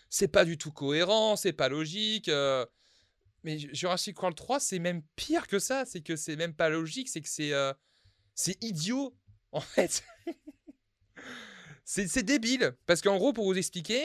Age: 20-39